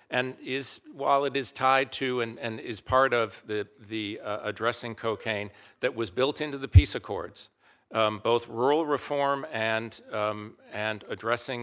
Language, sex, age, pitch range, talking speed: English, male, 50-69, 100-115 Hz, 165 wpm